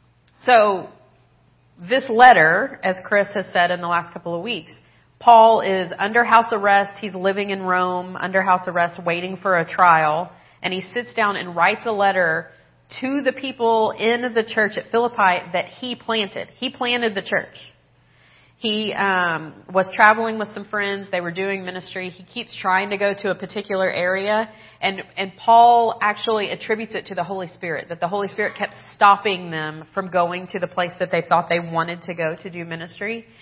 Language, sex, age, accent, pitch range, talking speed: English, female, 40-59, American, 175-210 Hz, 185 wpm